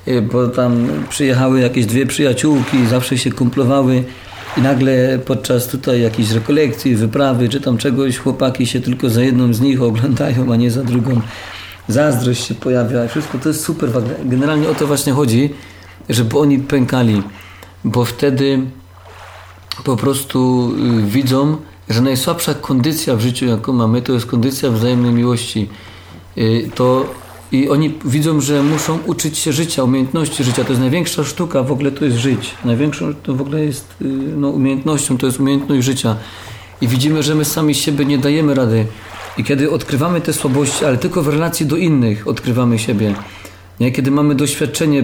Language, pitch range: Polish, 120-145 Hz